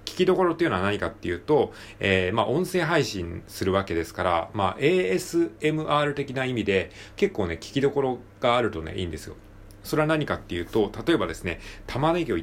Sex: male